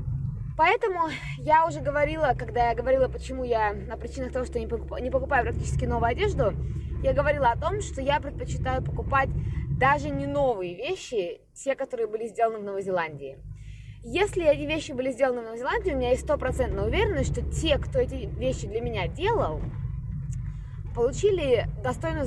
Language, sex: Russian, female